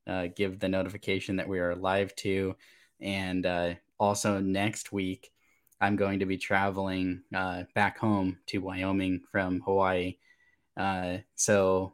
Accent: American